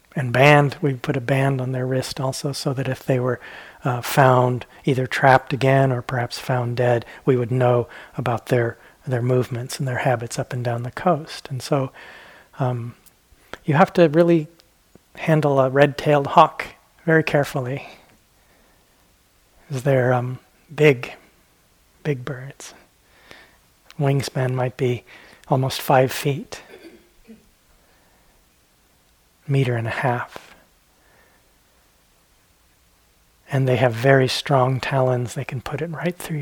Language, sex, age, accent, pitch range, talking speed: English, male, 40-59, American, 125-145 Hz, 130 wpm